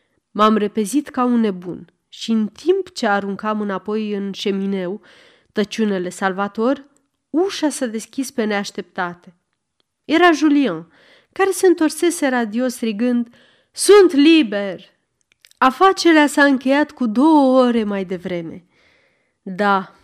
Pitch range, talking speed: 195-275 Hz, 115 wpm